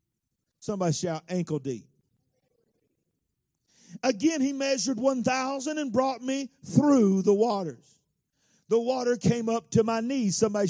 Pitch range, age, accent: 155-245 Hz, 50-69, American